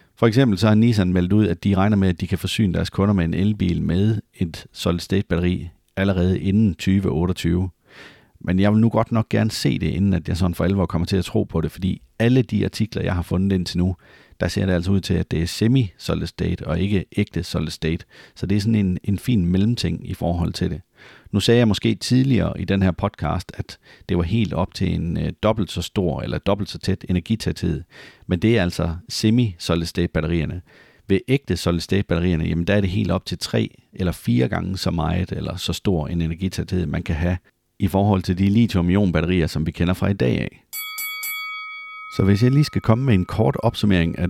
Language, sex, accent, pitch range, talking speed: Danish, male, native, 90-105 Hz, 210 wpm